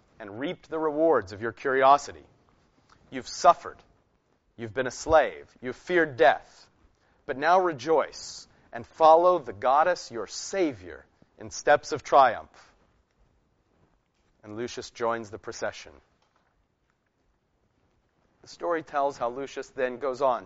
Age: 40-59